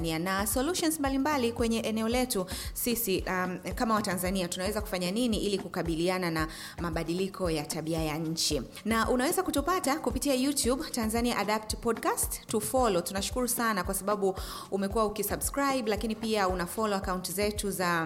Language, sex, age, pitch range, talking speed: English, female, 30-49, 175-225 Hz, 145 wpm